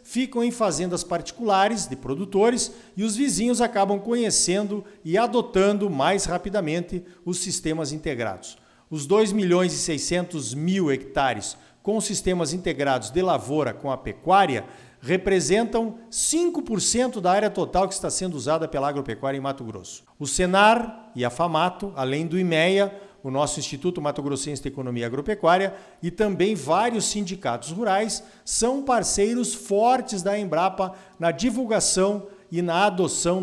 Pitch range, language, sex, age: 155-210 Hz, Portuguese, male, 50-69